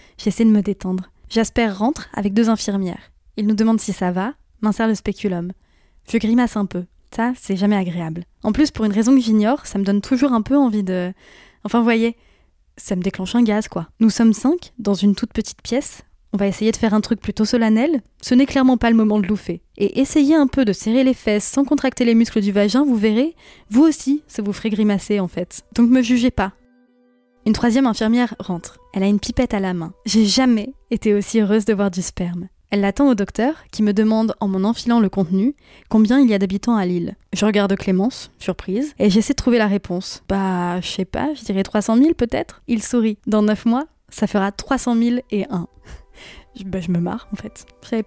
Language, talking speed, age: French, 225 wpm, 20-39